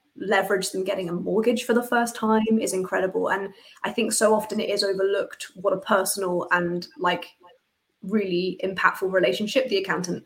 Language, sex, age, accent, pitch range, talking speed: English, female, 20-39, British, 190-235 Hz, 170 wpm